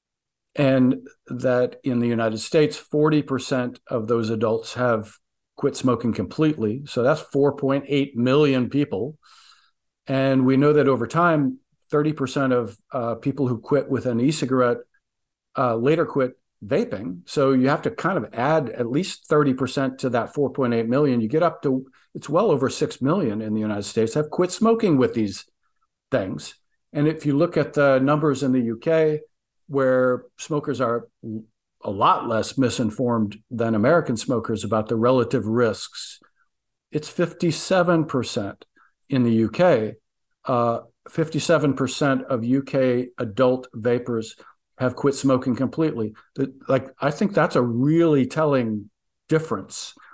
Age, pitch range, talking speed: 50-69, 120-145 Hz, 140 wpm